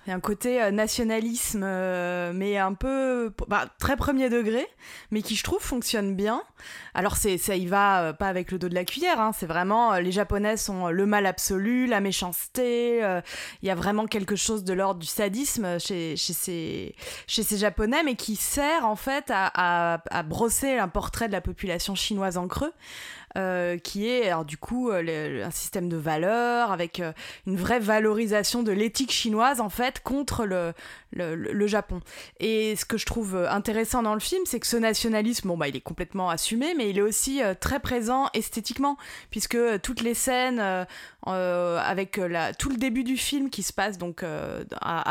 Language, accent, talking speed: French, French, 195 wpm